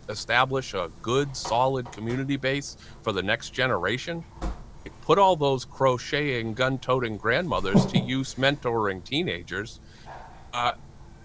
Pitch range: 105-135 Hz